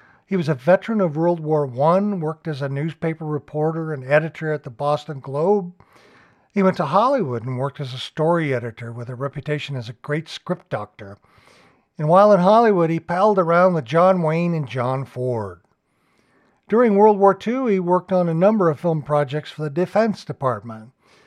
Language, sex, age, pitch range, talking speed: English, male, 60-79, 135-180 Hz, 185 wpm